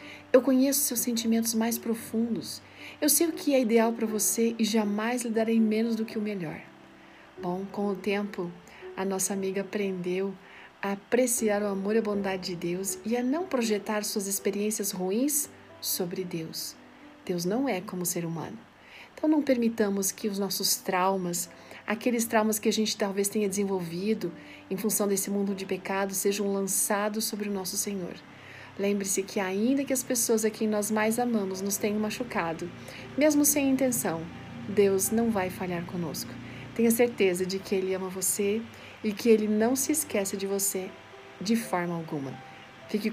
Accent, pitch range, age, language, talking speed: Brazilian, 190-230 Hz, 40-59, Portuguese, 170 wpm